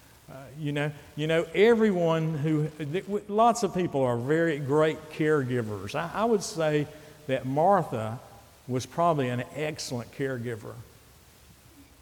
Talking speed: 120 wpm